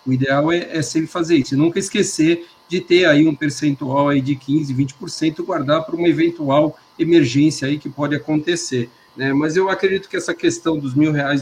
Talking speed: 200 wpm